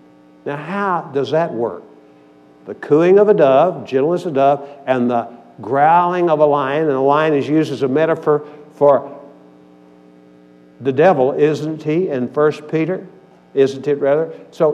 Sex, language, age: male, English, 60-79